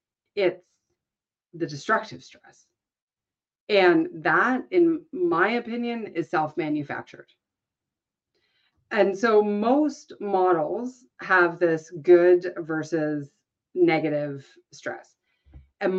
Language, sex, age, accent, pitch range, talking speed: English, female, 40-59, American, 160-215 Hz, 85 wpm